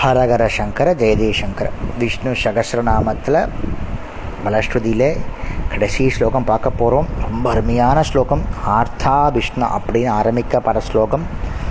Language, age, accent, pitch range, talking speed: Tamil, 20-39, native, 110-145 Hz, 85 wpm